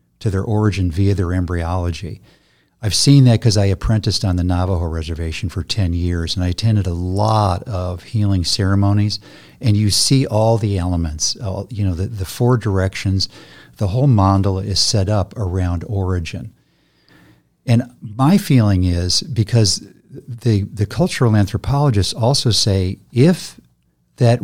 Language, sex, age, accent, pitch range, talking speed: English, male, 50-69, American, 90-115 Hz, 145 wpm